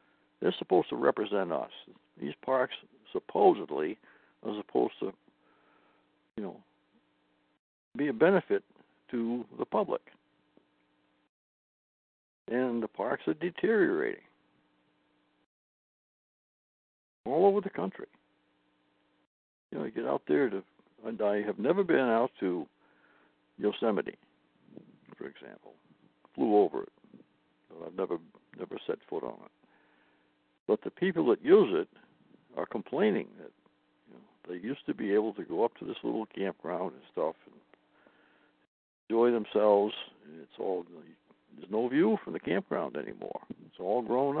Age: 60-79